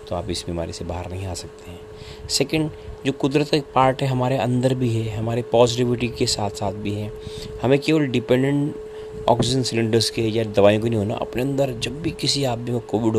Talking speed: 210 wpm